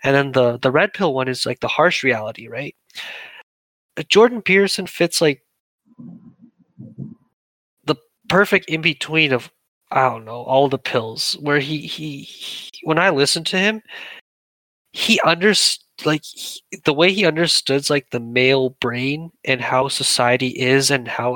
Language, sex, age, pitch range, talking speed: English, male, 20-39, 130-165 Hz, 155 wpm